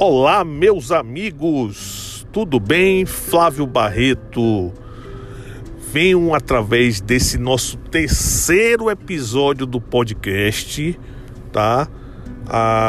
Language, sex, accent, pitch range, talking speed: Portuguese, male, Brazilian, 110-130 Hz, 80 wpm